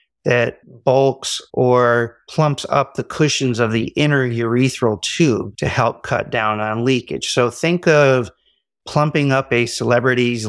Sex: male